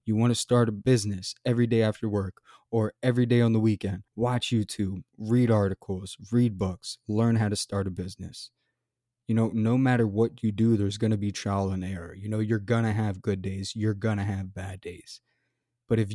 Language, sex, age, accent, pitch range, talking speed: English, male, 20-39, American, 100-120 Hz, 215 wpm